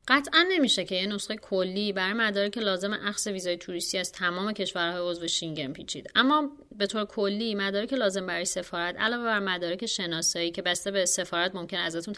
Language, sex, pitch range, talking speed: Persian, female, 175-230 Hz, 190 wpm